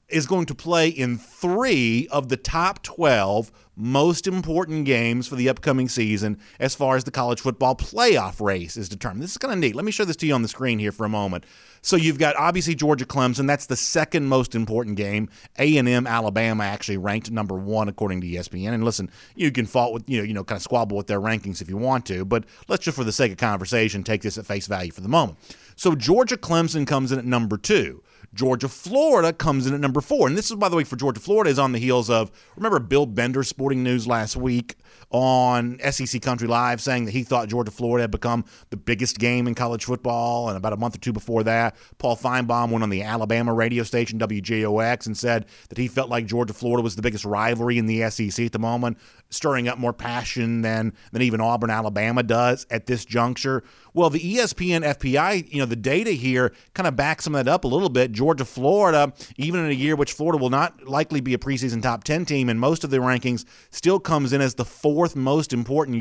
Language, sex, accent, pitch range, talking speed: English, male, American, 115-140 Hz, 230 wpm